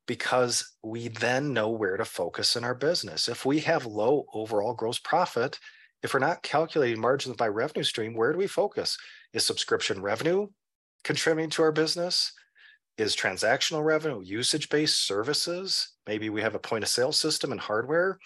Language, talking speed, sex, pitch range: English, 170 wpm, male, 110-190 Hz